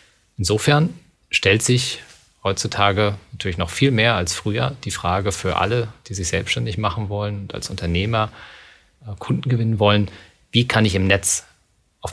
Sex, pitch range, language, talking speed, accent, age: male, 90-120 Hz, German, 155 wpm, German, 40-59